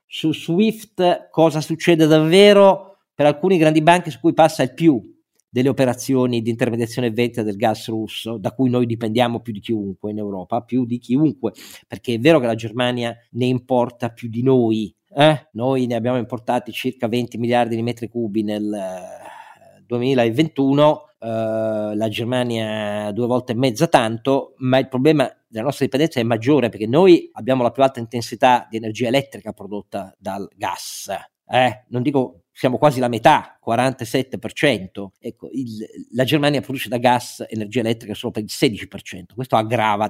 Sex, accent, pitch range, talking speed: male, native, 115-145 Hz, 165 wpm